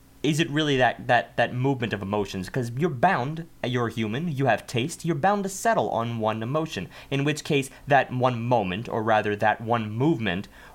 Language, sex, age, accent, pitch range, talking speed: English, male, 30-49, American, 100-135 Hz, 195 wpm